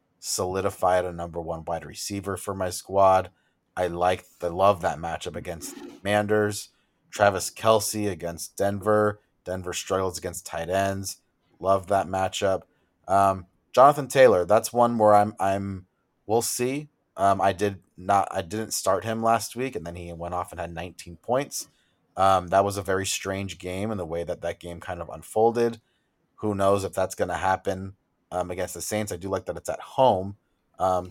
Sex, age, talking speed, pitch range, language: male, 30-49, 180 wpm, 90-105 Hz, English